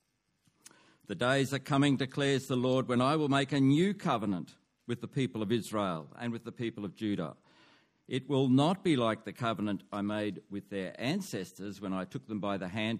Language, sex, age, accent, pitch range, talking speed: English, male, 60-79, Australian, 100-155 Hz, 205 wpm